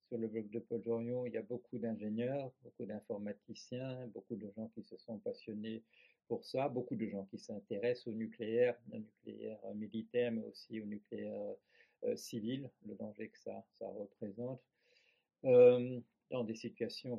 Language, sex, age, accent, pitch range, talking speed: French, male, 50-69, French, 110-125 Hz, 170 wpm